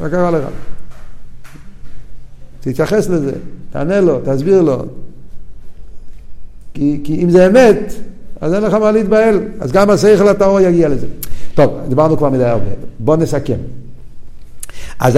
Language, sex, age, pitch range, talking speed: Hebrew, male, 50-69, 110-140 Hz, 135 wpm